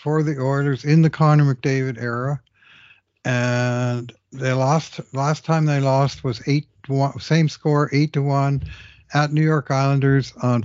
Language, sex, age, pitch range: English, male, 60-79, 110-130 Hz